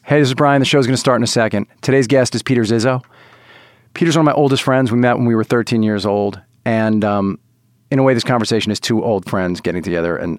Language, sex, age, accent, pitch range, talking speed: English, male, 40-59, American, 100-125 Hz, 260 wpm